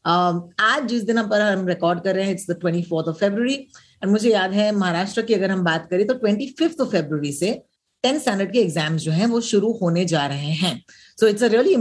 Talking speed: 225 wpm